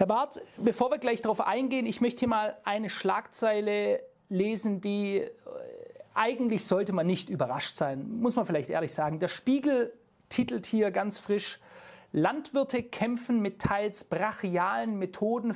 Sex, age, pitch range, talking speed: male, 40-59, 185-235 Hz, 145 wpm